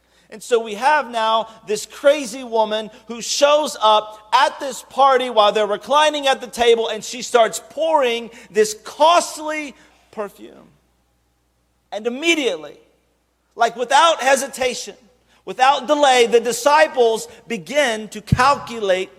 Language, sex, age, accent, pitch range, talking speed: English, male, 40-59, American, 195-255 Hz, 120 wpm